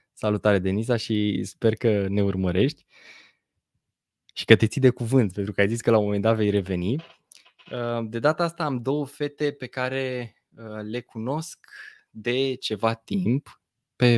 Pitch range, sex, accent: 105-130 Hz, male, native